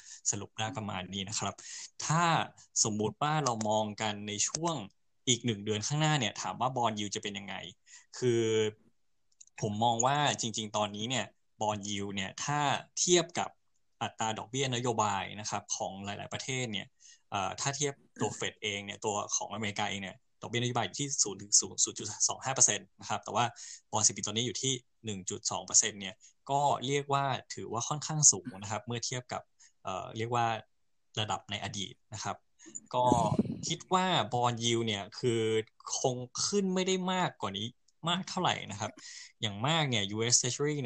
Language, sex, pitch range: Thai, male, 105-135 Hz